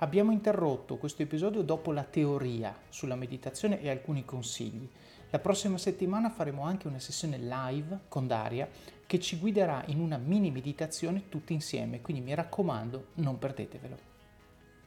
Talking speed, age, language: 145 wpm, 30-49, Italian